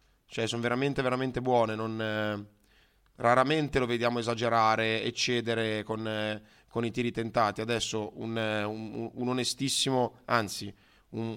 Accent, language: native, Italian